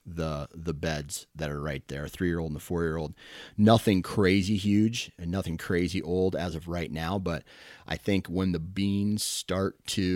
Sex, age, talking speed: male, 30-49, 175 wpm